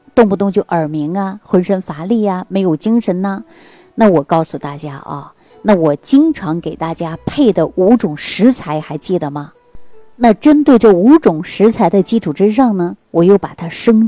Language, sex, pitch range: Chinese, female, 155-225 Hz